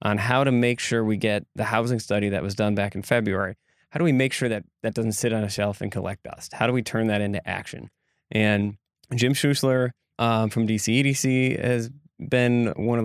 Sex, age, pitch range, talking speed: male, 20-39, 105-120 Hz, 220 wpm